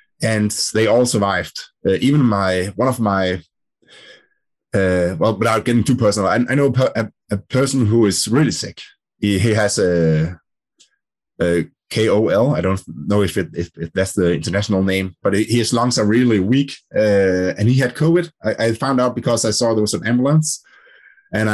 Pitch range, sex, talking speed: 95-125 Hz, male, 185 wpm